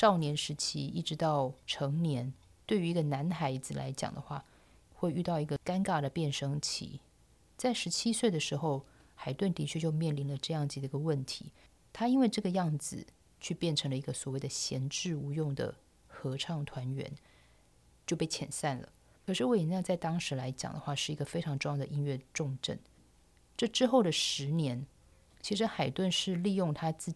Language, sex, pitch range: Chinese, female, 140-180 Hz